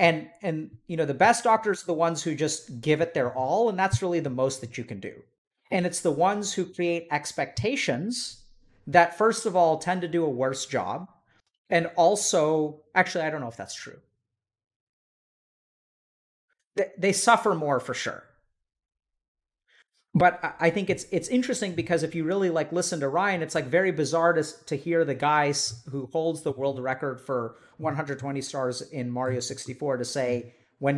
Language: English